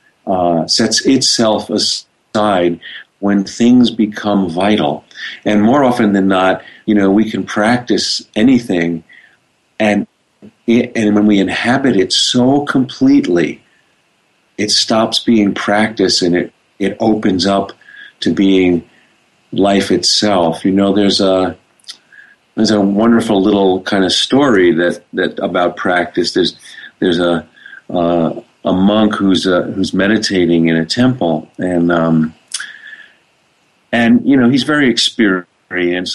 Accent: American